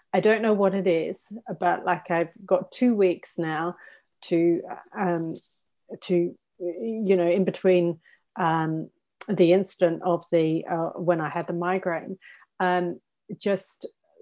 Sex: female